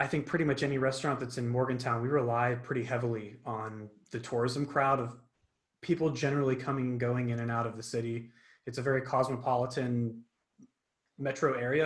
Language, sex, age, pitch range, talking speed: English, male, 30-49, 120-140 Hz, 175 wpm